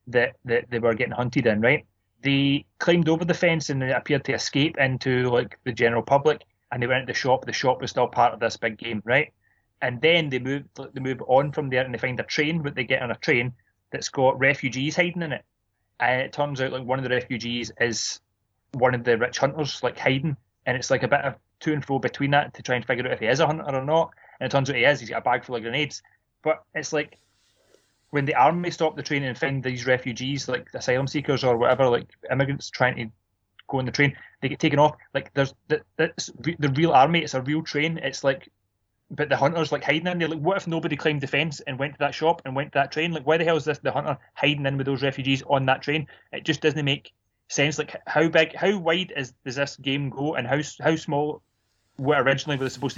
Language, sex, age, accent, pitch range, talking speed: English, male, 20-39, British, 125-150 Hz, 255 wpm